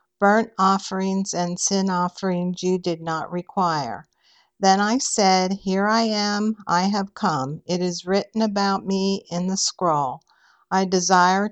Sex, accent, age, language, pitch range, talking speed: female, American, 50-69, English, 180-200 Hz, 145 wpm